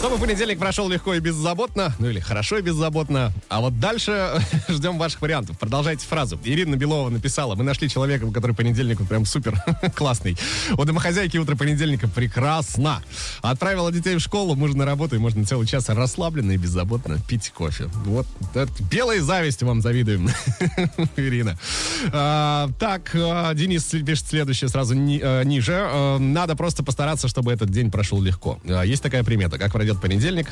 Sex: male